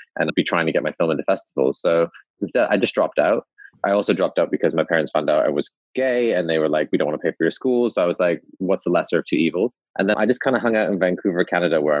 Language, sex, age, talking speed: English, male, 20-39, 305 wpm